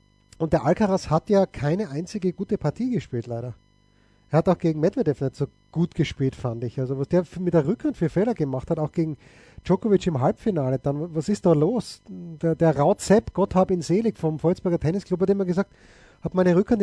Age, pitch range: 30-49, 145-185 Hz